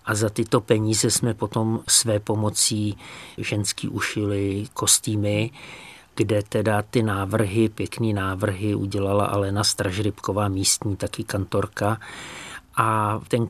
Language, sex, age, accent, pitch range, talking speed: Czech, male, 50-69, native, 105-115 Hz, 110 wpm